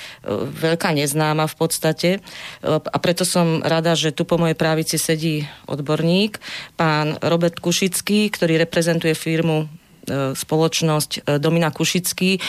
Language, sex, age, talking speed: Slovak, female, 40-59, 115 wpm